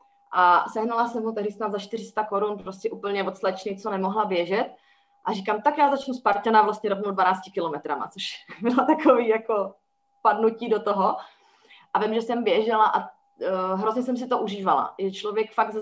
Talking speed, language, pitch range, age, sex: 180 wpm, Slovak, 195-235 Hz, 30-49, female